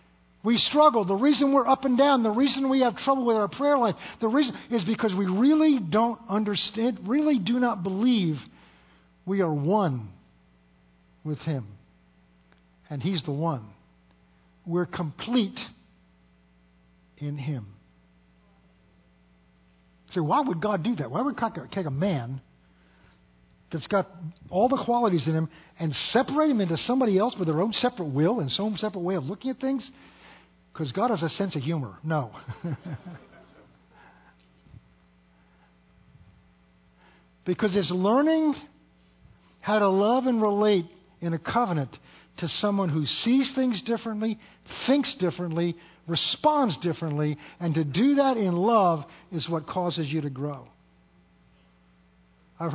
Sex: male